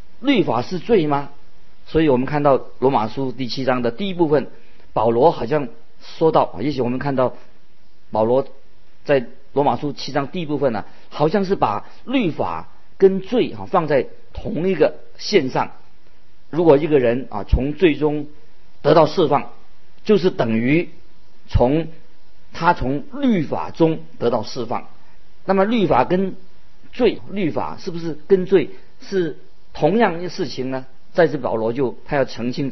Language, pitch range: Chinese, 130-180 Hz